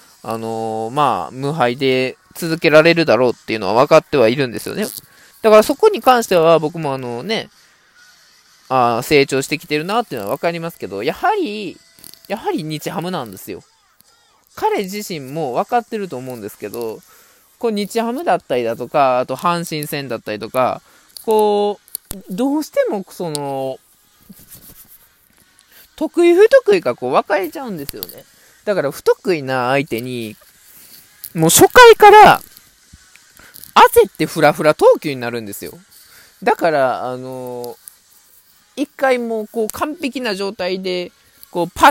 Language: Japanese